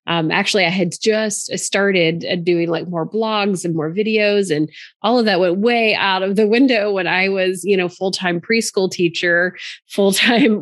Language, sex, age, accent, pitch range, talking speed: English, female, 30-49, American, 170-205 Hz, 180 wpm